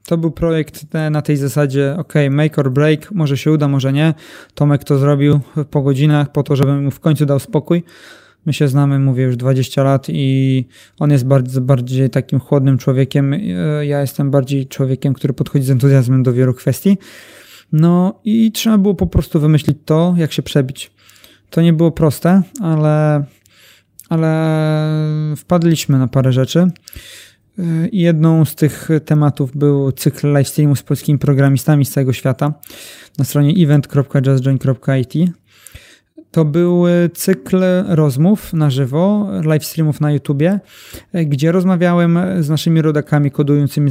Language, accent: Polish, native